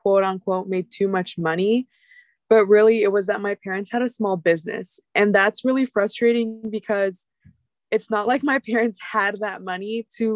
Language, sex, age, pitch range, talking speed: English, female, 20-39, 190-225 Hz, 180 wpm